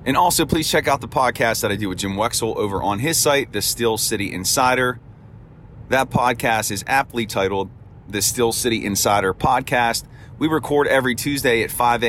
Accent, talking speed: American, 185 wpm